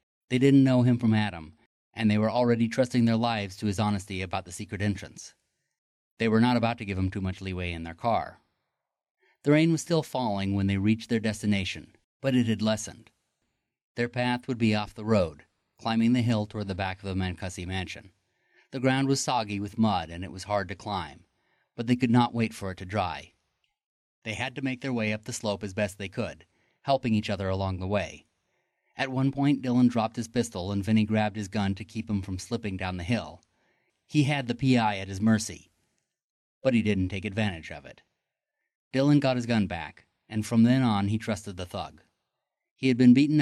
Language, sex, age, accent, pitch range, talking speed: English, male, 30-49, American, 100-120 Hz, 215 wpm